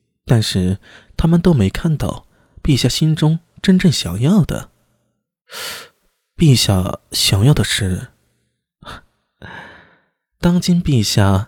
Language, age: Chinese, 20-39